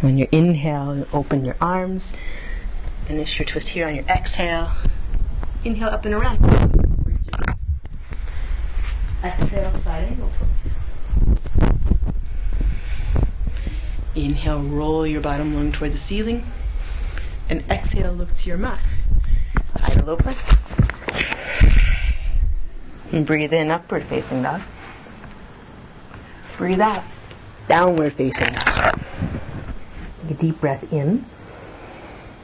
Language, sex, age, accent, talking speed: English, female, 30-49, American, 95 wpm